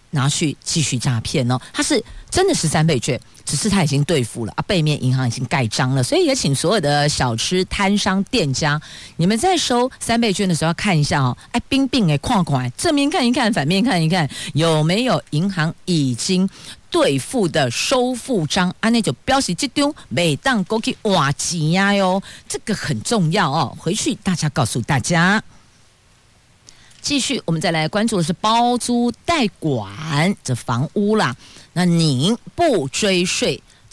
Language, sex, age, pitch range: Chinese, female, 50-69, 140-210 Hz